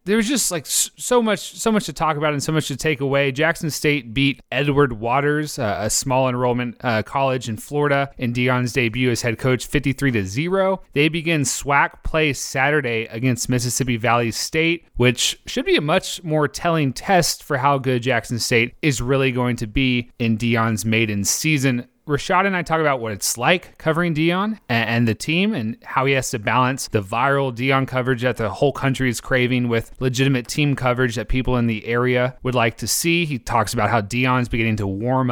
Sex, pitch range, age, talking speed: male, 120-150 Hz, 30-49, 200 wpm